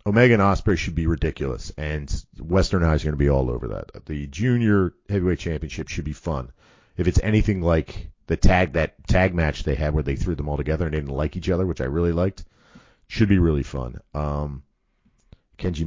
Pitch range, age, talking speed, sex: 75-105 Hz, 40-59, 210 wpm, male